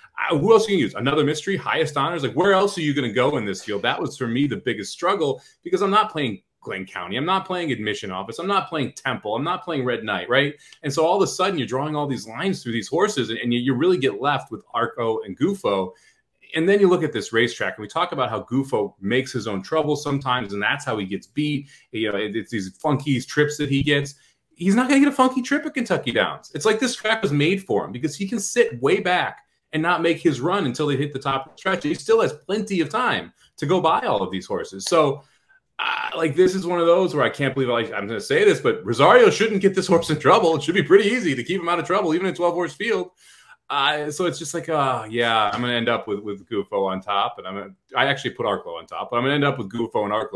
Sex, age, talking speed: male, 30-49, 280 wpm